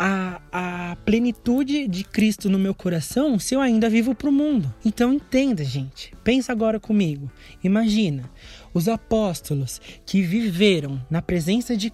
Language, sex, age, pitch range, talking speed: Portuguese, male, 20-39, 175-220 Hz, 145 wpm